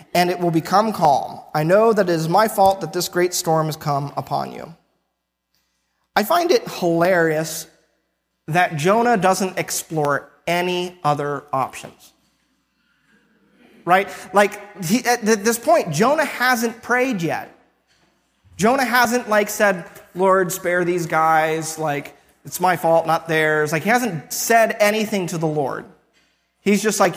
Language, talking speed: English, 145 wpm